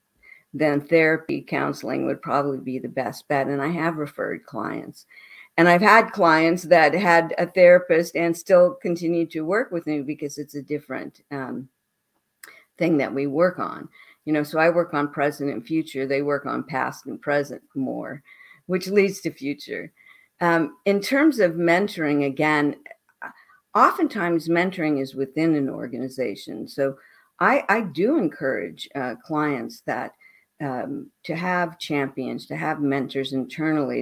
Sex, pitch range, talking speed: female, 135-170 Hz, 155 wpm